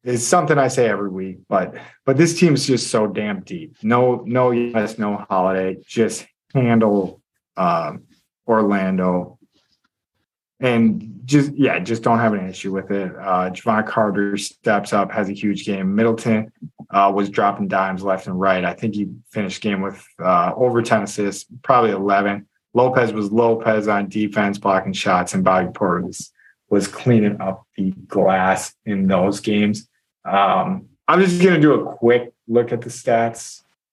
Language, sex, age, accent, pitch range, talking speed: English, male, 30-49, American, 100-120 Hz, 165 wpm